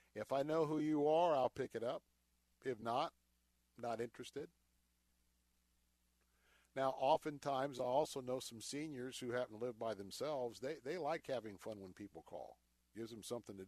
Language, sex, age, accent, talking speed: English, male, 50-69, American, 175 wpm